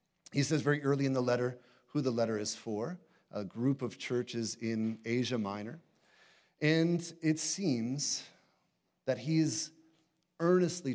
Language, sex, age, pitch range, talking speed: English, male, 40-59, 115-160 Hz, 135 wpm